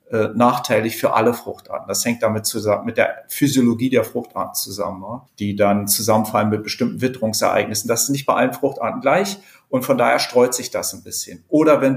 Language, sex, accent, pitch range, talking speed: German, male, German, 120-150 Hz, 185 wpm